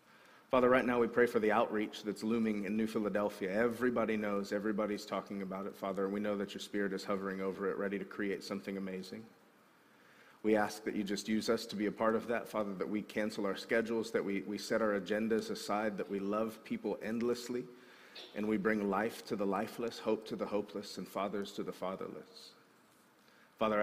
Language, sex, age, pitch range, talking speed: English, male, 40-59, 100-110 Hz, 210 wpm